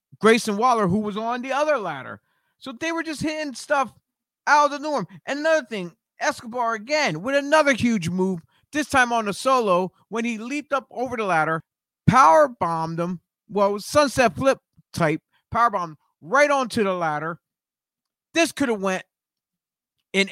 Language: English